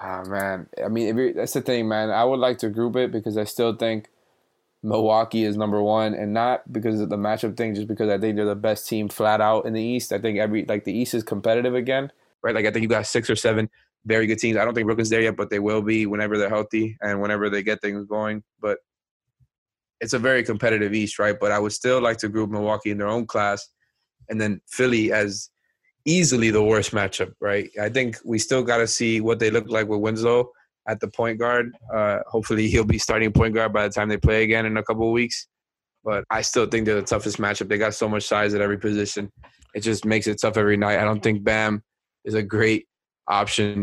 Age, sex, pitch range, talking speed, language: 20-39, male, 105-115 Hz, 245 wpm, English